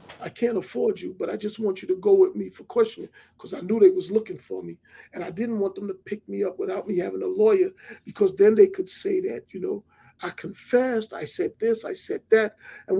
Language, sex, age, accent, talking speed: English, male, 40-59, American, 250 wpm